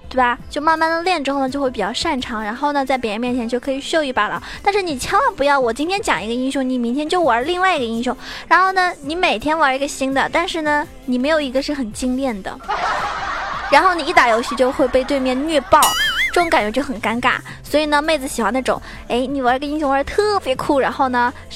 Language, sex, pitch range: Chinese, female, 245-325 Hz